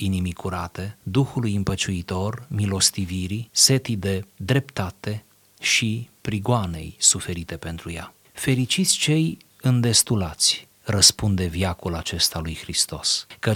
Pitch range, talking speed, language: 95-120 Hz, 95 wpm, Romanian